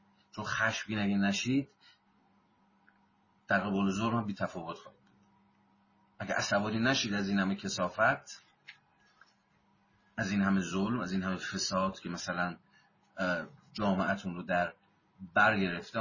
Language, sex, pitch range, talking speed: Persian, male, 95-120 Hz, 110 wpm